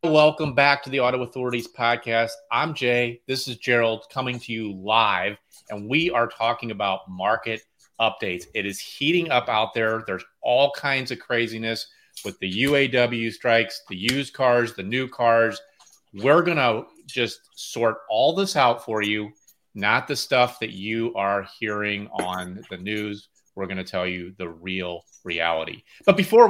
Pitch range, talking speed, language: 100-125 Hz, 170 wpm, English